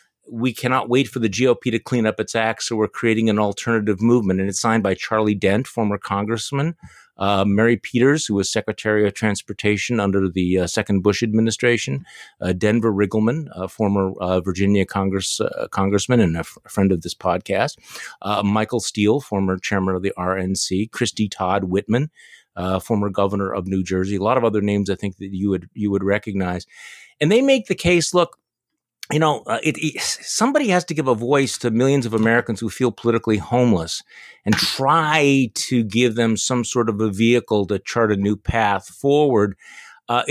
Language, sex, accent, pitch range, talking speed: English, male, American, 100-130 Hz, 190 wpm